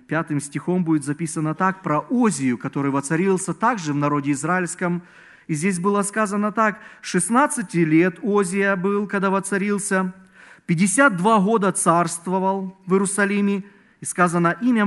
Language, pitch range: Russian, 150-195 Hz